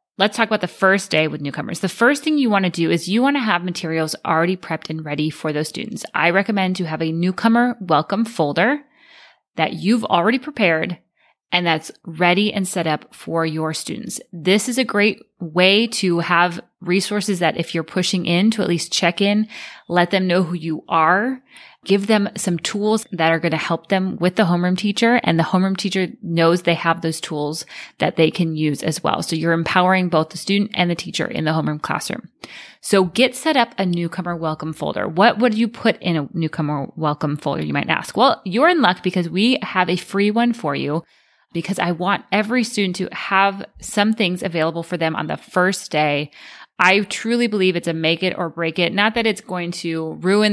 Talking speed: 215 wpm